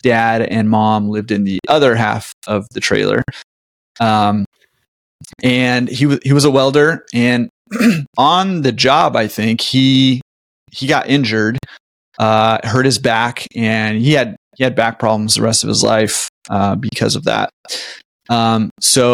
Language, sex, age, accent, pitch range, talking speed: English, male, 30-49, American, 110-130 Hz, 160 wpm